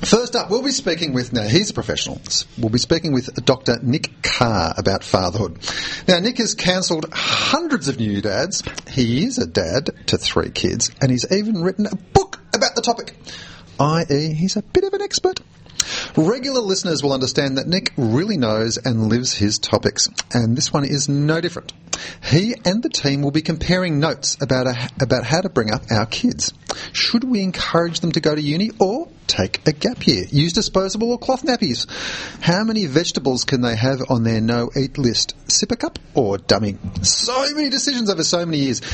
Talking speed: 195 wpm